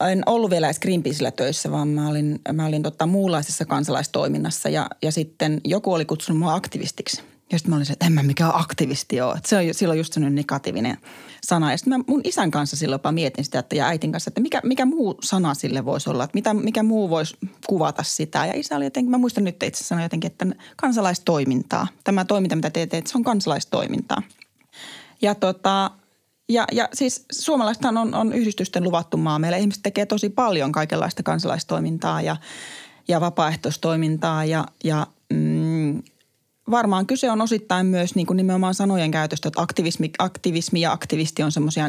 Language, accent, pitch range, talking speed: Finnish, native, 150-195 Hz, 170 wpm